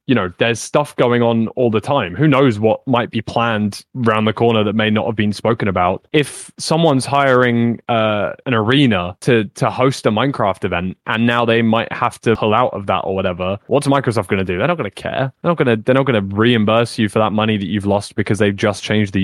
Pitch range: 105-125 Hz